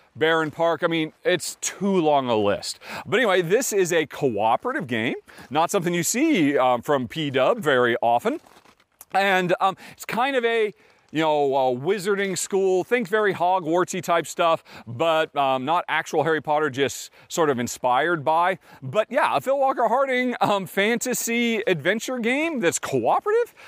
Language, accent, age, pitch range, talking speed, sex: English, American, 40-59, 145-210 Hz, 165 wpm, male